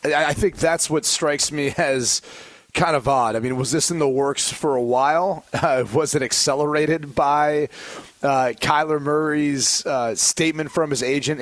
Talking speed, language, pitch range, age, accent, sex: 175 wpm, English, 125-160 Hz, 30-49, American, male